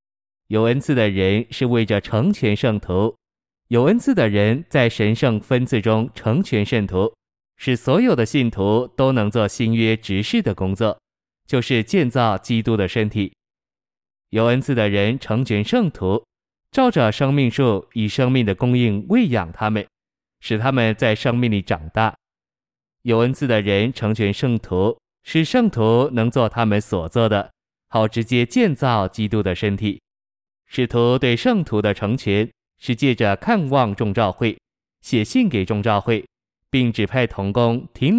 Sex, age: male, 20-39